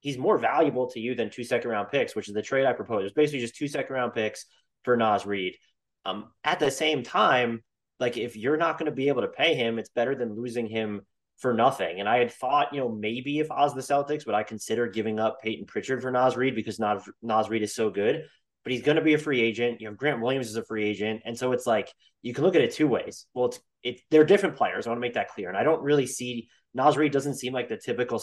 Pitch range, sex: 110-130 Hz, male